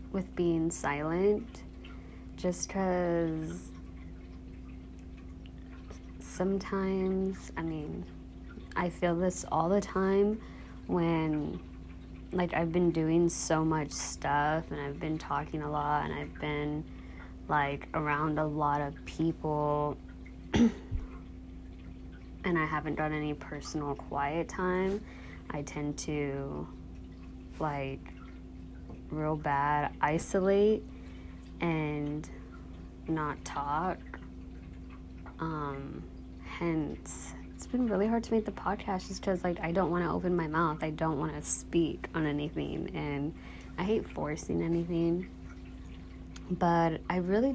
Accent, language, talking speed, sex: American, English, 115 wpm, female